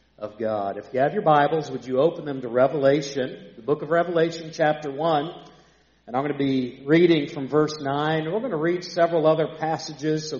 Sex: male